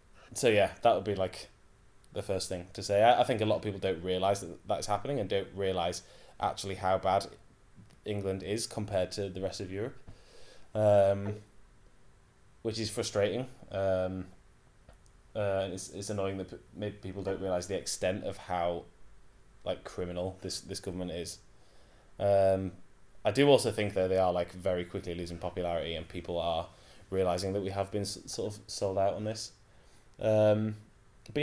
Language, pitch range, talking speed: English, 90-105 Hz, 170 wpm